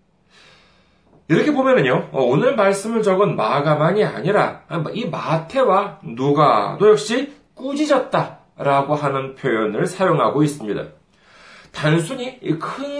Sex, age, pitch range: male, 40-59, 145-230 Hz